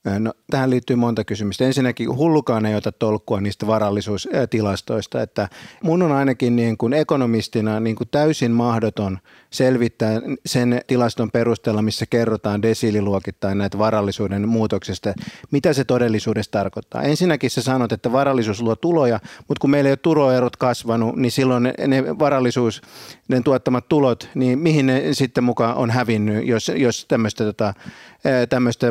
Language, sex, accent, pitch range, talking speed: Finnish, male, native, 110-135 Hz, 145 wpm